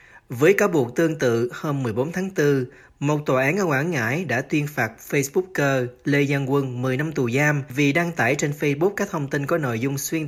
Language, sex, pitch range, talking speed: Vietnamese, male, 125-155 Hz, 220 wpm